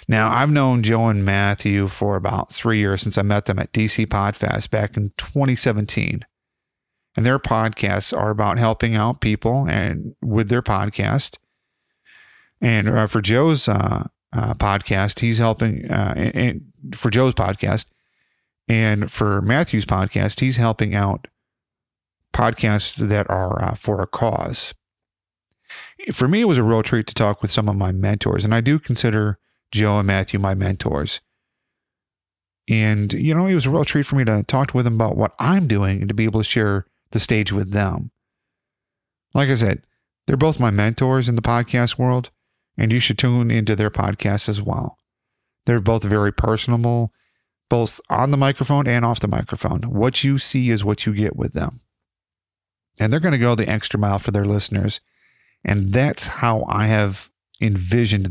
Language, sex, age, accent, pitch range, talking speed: English, male, 40-59, American, 105-120 Hz, 175 wpm